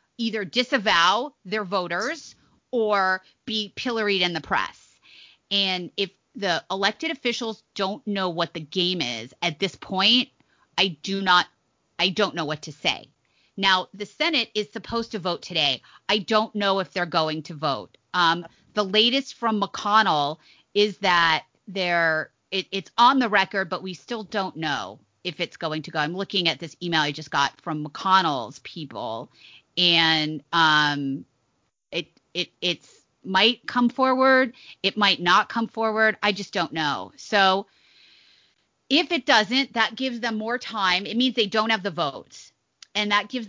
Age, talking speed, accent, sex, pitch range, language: 30-49, 165 wpm, American, female, 170-220 Hz, English